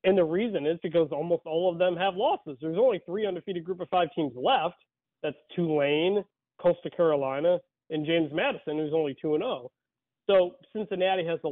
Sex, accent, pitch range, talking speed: male, American, 145-190 Hz, 180 wpm